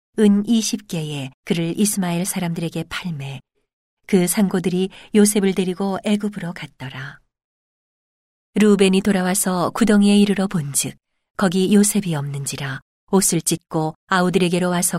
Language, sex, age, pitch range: Korean, female, 40-59, 160-200 Hz